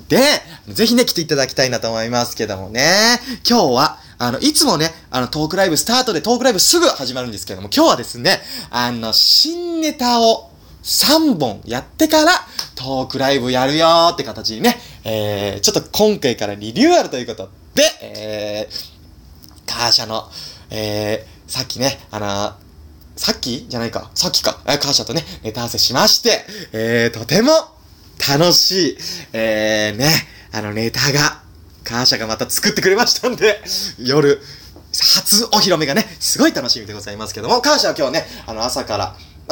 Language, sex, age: Japanese, male, 20-39